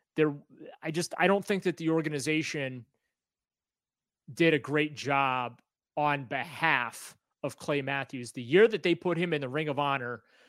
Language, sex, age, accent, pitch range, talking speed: English, male, 30-49, American, 130-155 Hz, 165 wpm